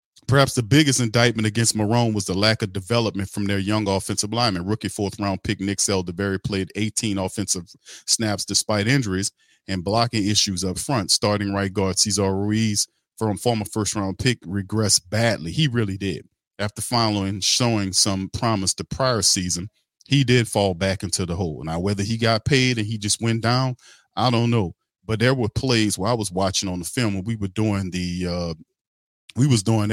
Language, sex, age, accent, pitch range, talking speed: English, male, 40-59, American, 95-115 Hz, 185 wpm